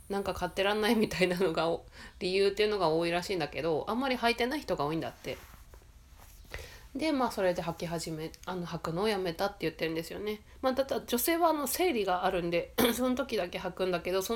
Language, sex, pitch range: Japanese, female, 160-210 Hz